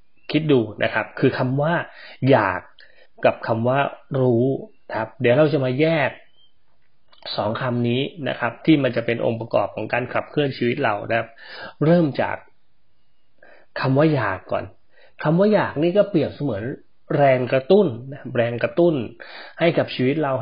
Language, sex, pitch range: Thai, male, 120-155 Hz